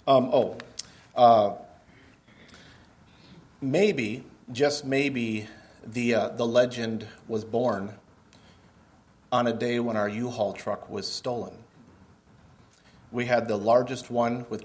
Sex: male